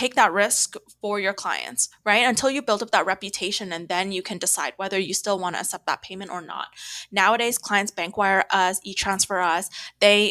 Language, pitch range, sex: English, 190-240 Hz, female